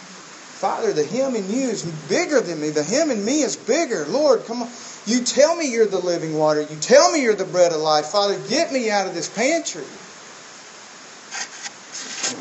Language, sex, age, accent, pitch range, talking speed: English, male, 40-59, American, 160-225 Hz, 200 wpm